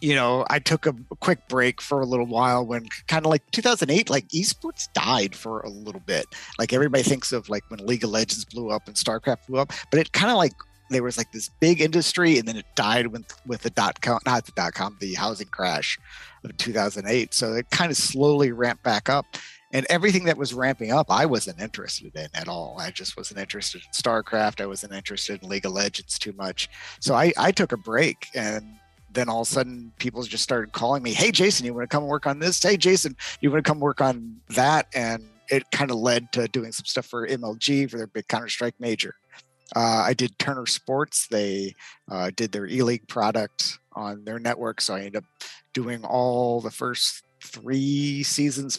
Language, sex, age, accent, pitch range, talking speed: English, male, 50-69, American, 110-140 Hz, 215 wpm